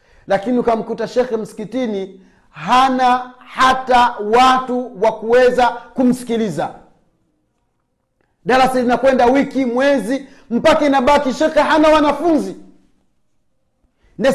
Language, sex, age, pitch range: Swahili, male, 40-59, 240-300 Hz